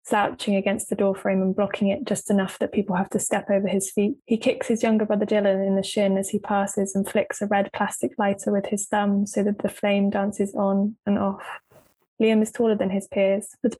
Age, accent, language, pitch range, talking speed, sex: 20-39, British, English, 195-215 Hz, 230 wpm, female